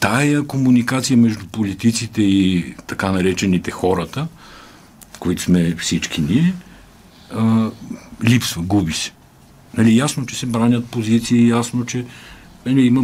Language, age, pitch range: Bulgarian, 50-69, 90-120 Hz